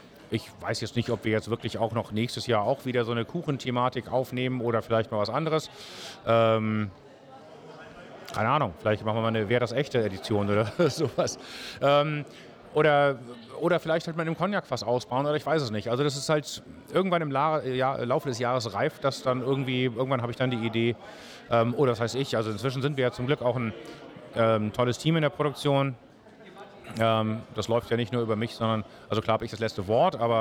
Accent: German